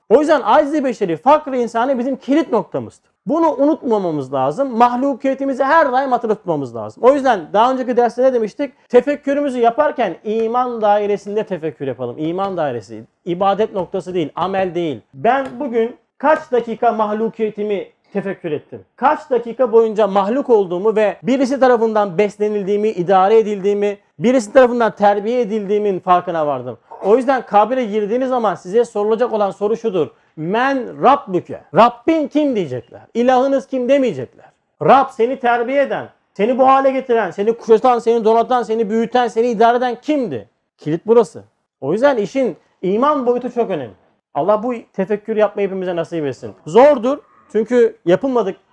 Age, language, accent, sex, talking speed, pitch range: 40-59, Turkish, native, male, 145 wpm, 200-255 Hz